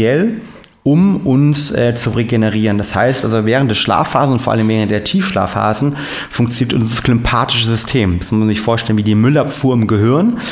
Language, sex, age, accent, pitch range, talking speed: German, male, 30-49, German, 110-140 Hz, 175 wpm